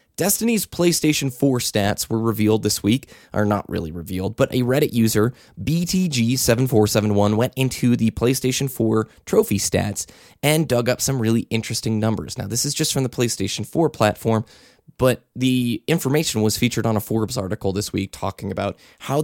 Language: English